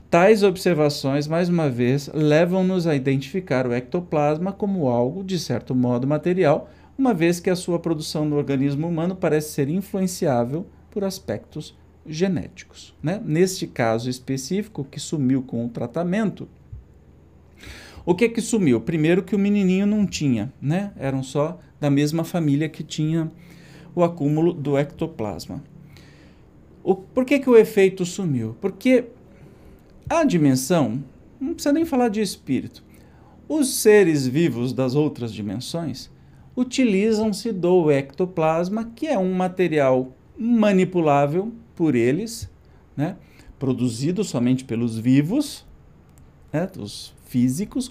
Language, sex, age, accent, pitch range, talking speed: Portuguese, male, 50-69, Brazilian, 130-190 Hz, 130 wpm